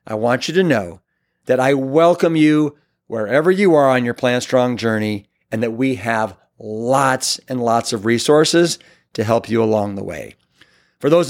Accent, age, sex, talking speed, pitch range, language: American, 50-69, male, 180 wpm, 120-155 Hz, English